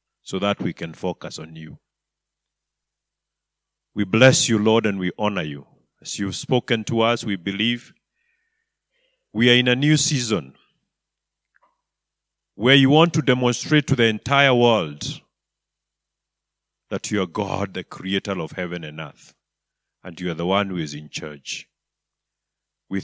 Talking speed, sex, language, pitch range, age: 150 wpm, male, English, 100-135 Hz, 50-69